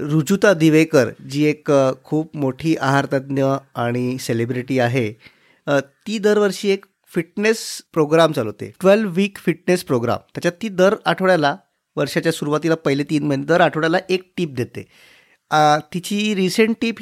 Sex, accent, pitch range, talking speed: male, native, 145-190 Hz, 125 wpm